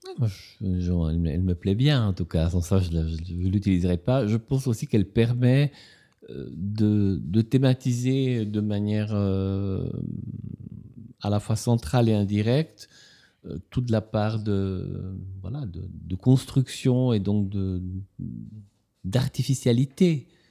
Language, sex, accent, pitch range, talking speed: French, male, French, 100-125 Hz, 135 wpm